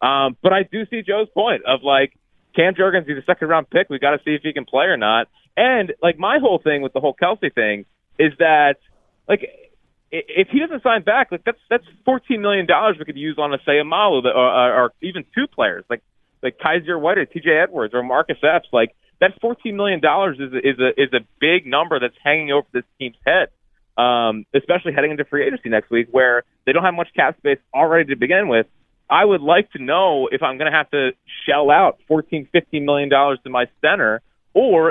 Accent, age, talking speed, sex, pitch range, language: American, 30-49, 220 wpm, male, 135-180 Hz, English